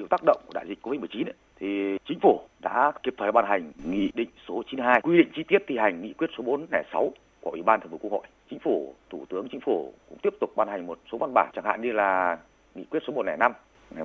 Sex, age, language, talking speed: male, 30-49, Vietnamese, 260 wpm